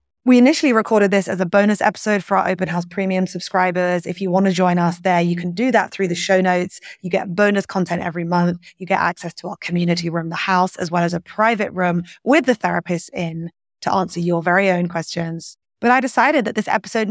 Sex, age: female, 20-39